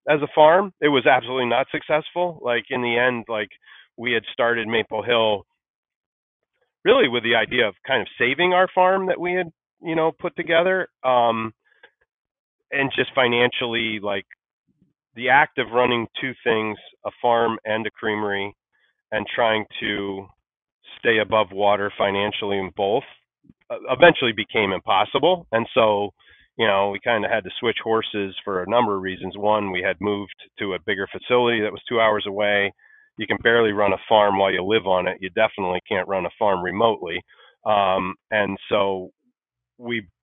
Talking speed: 170 wpm